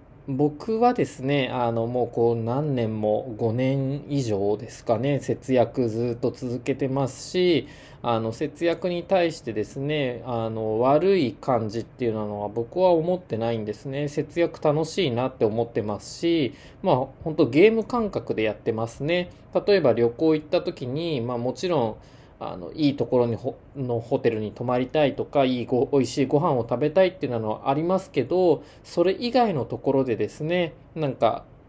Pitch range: 120-165 Hz